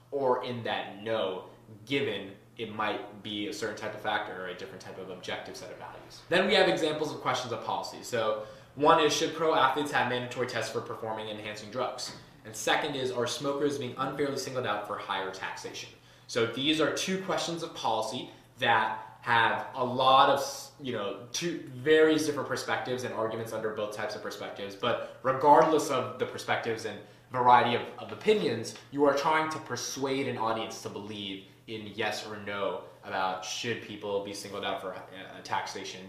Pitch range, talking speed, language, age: 105-135 Hz, 190 wpm, English, 20-39